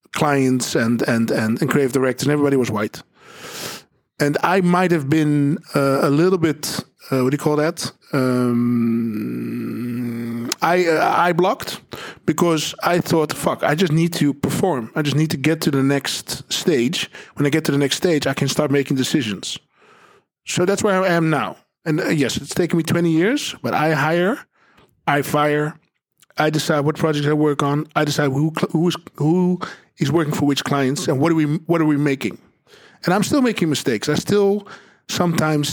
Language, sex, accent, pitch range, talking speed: Dutch, male, Dutch, 130-165 Hz, 190 wpm